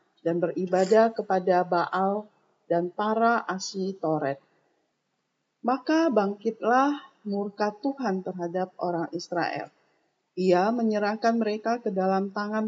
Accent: native